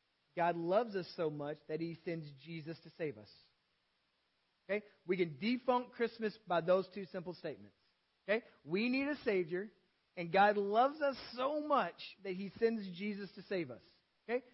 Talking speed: 170 wpm